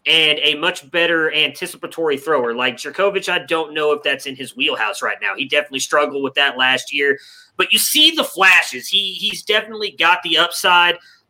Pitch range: 165-200 Hz